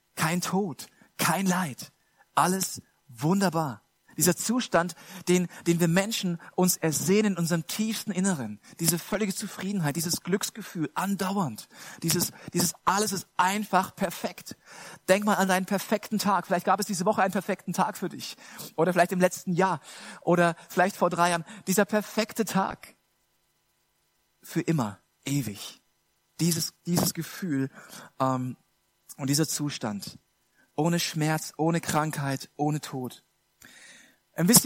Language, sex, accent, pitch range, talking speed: German, male, German, 165-200 Hz, 130 wpm